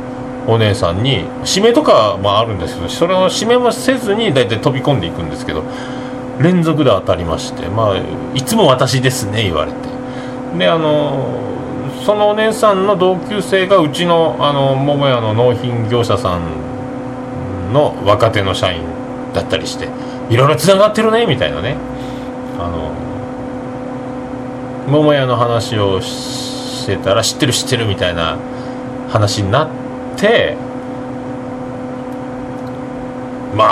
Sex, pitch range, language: male, 120-150 Hz, Japanese